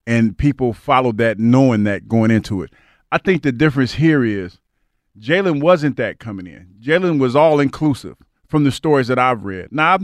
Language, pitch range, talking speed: English, 115-155 Hz, 185 wpm